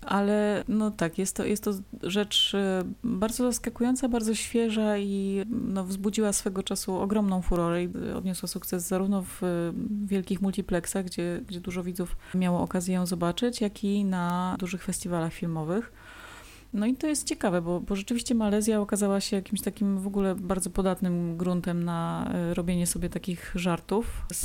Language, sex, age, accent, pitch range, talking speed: Polish, female, 30-49, native, 180-210 Hz, 150 wpm